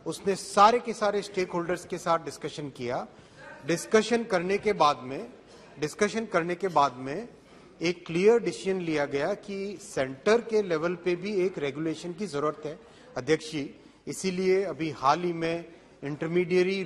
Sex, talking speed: male, 45 wpm